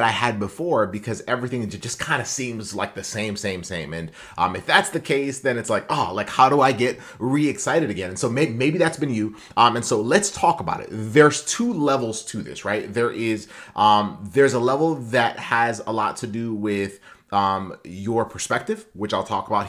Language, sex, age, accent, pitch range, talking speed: English, male, 30-49, American, 100-135 Hz, 205 wpm